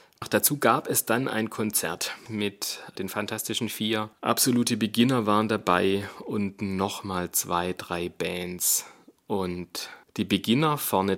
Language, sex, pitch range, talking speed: German, male, 100-120 Hz, 125 wpm